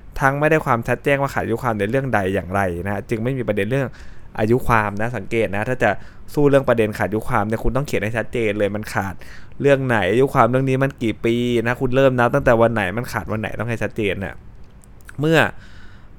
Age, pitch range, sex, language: 20-39, 105-130 Hz, male, Thai